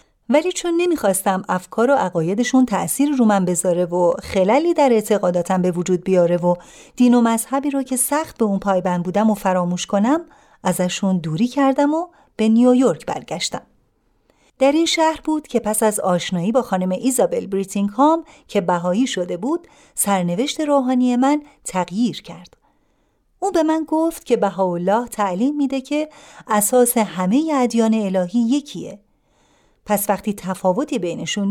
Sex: female